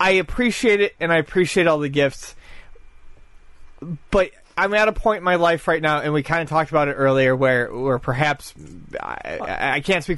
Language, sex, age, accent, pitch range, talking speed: English, male, 30-49, American, 125-160 Hz, 200 wpm